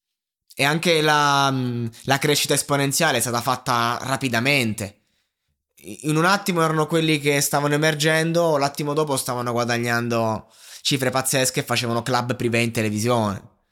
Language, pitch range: Italian, 120-145 Hz